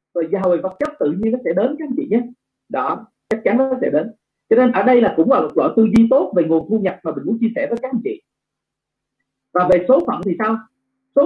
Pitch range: 195-270 Hz